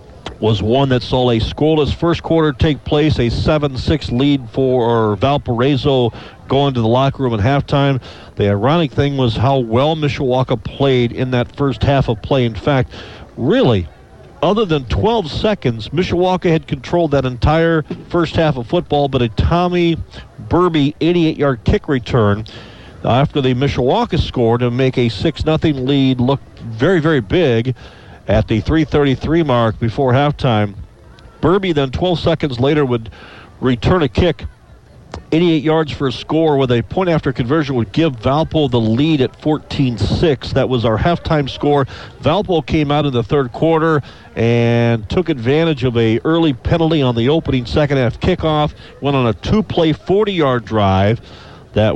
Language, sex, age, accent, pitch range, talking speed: English, male, 50-69, American, 115-155 Hz, 155 wpm